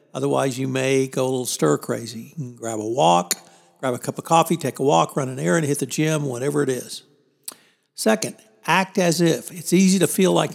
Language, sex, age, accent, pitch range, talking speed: English, male, 60-79, American, 135-160 Hz, 220 wpm